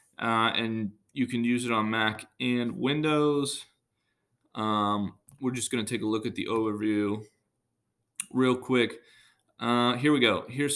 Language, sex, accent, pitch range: English, male, American, 110-130 Hz